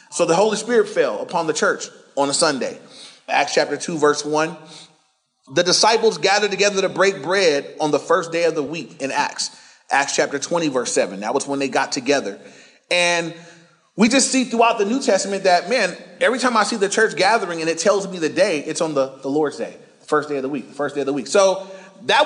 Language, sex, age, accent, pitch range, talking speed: English, male, 30-49, American, 170-240 Hz, 230 wpm